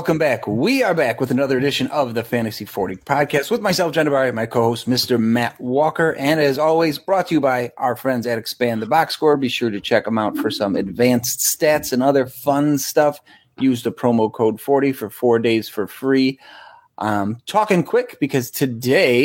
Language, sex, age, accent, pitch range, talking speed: English, male, 30-49, American, 120-160 Hz, 205 wpm